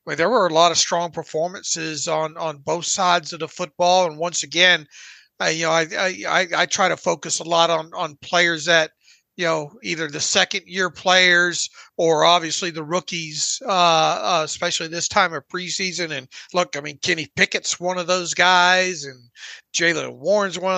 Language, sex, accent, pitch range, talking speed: English, male, American, 165-190 Hz, 180 wpm